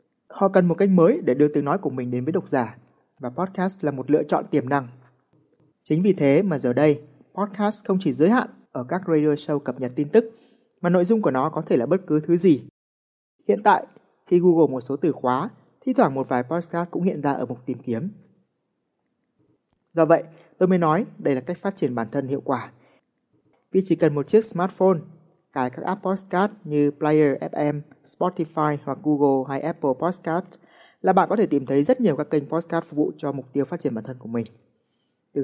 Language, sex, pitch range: Vietnamese, male, 135-180 Hz